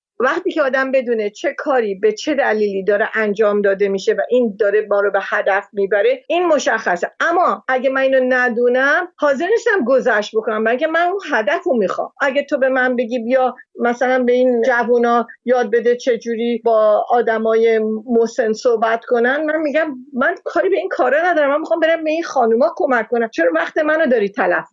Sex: female